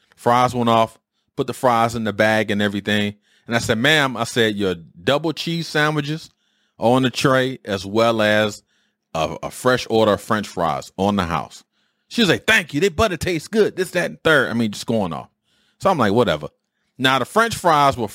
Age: 30-49